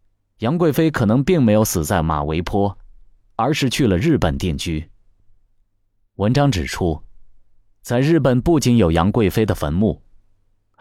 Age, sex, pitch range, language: 20-39, male, 95-125 Hz, Chinese